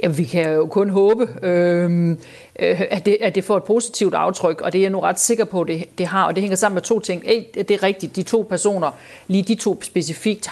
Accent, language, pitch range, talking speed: native, Danish, 155-190 Hz, 255 wpm